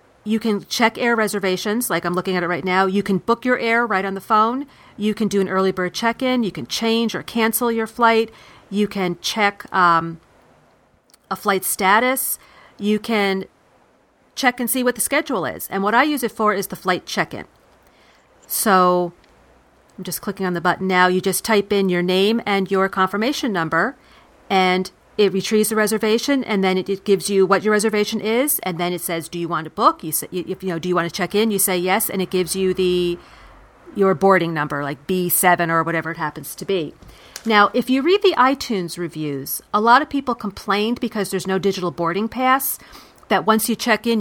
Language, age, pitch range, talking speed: English, 40-59, 180-220 Hz, 210 wpm